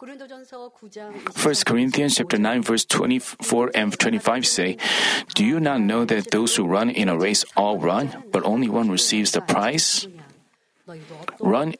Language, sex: Korean, male